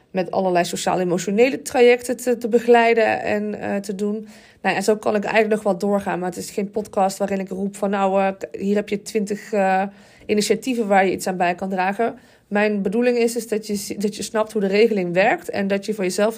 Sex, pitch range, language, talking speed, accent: female, 185-230 Hz, Dutch, 225 wpm, Dutch